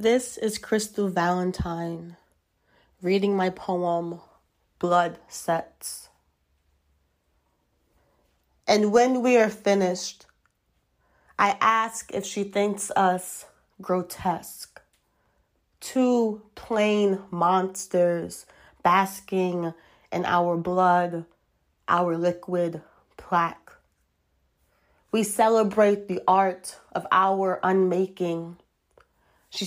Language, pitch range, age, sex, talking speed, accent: English, 175-205 Hz, 20-39, female, 80 wpm, American